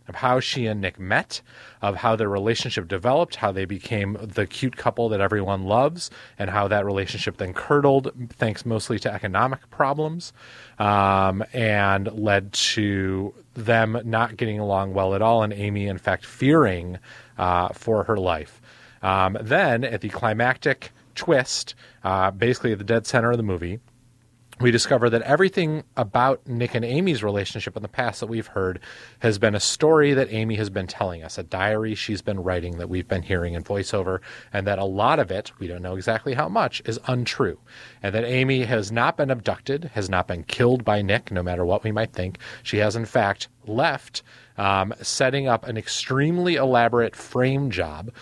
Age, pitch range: 30-49, 100-125 Hz